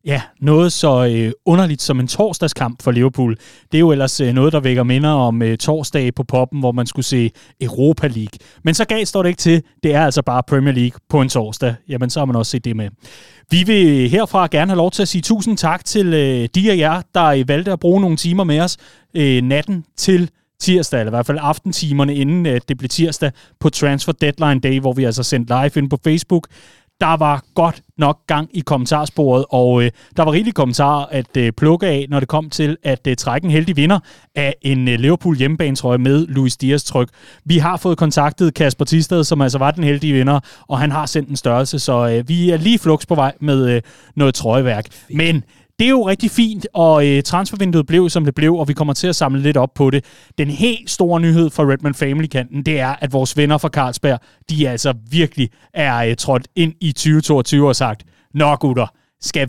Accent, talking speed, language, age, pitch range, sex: native, 225 wpm, Danish, 30-49, 130-165 Hz, male